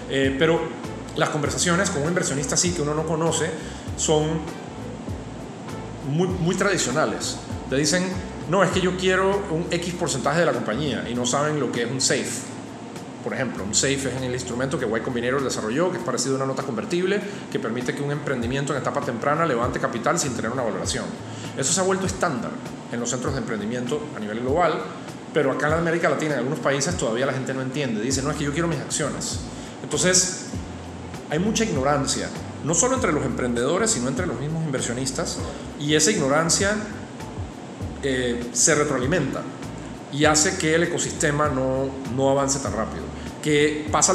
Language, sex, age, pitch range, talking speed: Spanish, male, 30-49, 125-160 Hz, 185 wpm